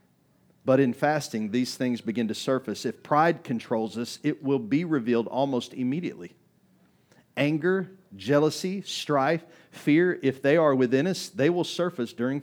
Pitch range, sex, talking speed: 100-155 Hz, male, 150 wpm